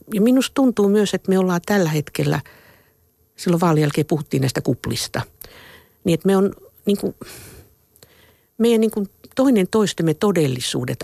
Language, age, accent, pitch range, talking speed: Finnish, 50-69, native, 125-175 Hz, 140 wpm